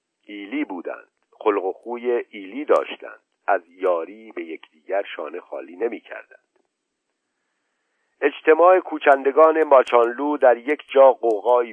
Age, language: 50-69, Persian